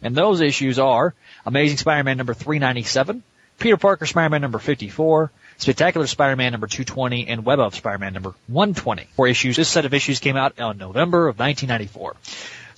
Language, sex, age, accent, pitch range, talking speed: English, male, 30-49, American, 115-150 Hz, 160 wpm